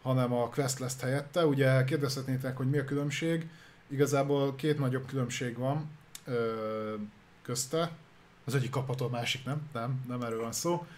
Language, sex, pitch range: Hungarian, male, 120-155 Hz